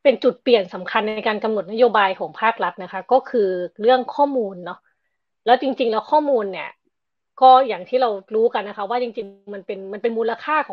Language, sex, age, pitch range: Thai, female, 20-39, 190-250 Hz